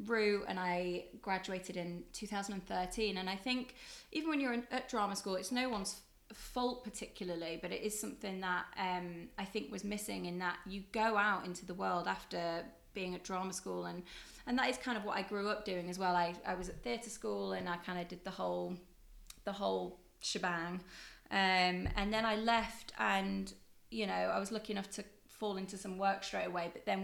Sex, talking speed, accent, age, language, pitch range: female, 205 wpm, British, 20-39, English, 180-220 Hz